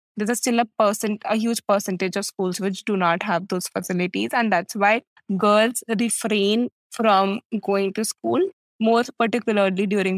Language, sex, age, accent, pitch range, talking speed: English, female, 20-39, Indian, 195-235 Hz, 165 wpm